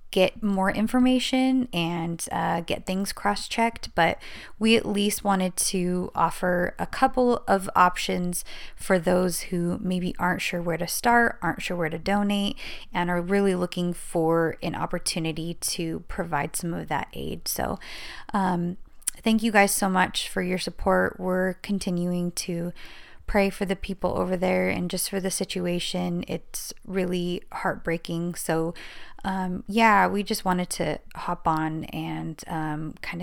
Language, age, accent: English, 20-39, American